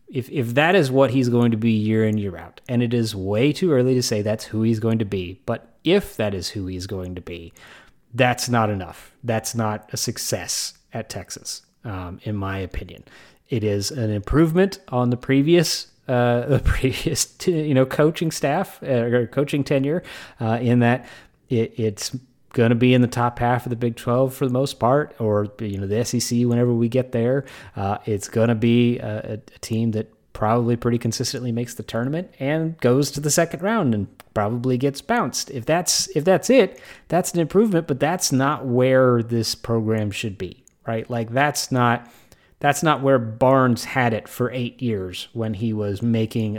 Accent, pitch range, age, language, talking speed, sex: American, 110-135 Hz, 30-49, English, 200 wpm, male